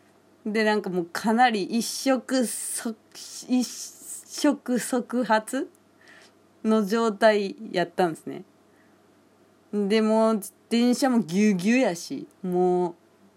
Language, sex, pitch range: Japanese, female, 180-235 Hz